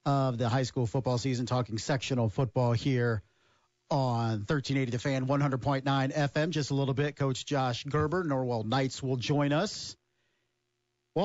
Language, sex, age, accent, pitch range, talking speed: English, male, 50-69, American, 125-180 Hz, 150 wpm